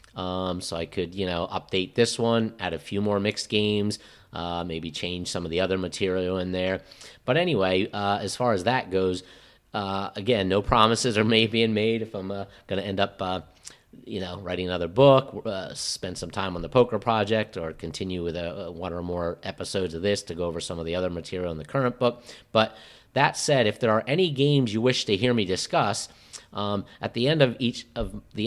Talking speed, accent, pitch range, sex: 225 wpm, American, 85-115 Hz, male